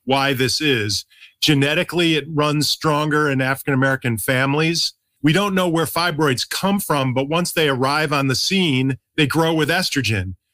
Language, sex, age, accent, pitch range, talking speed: English, male, 40-59, American, 140-170 Hz, 160 wpm